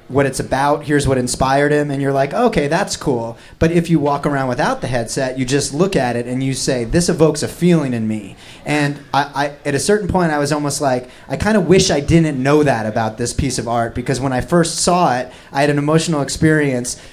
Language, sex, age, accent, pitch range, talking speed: English, male, 30-49, American, 125-160 Hz, 240 wpm